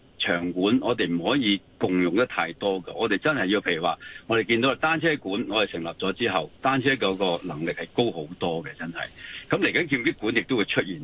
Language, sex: Chinese, male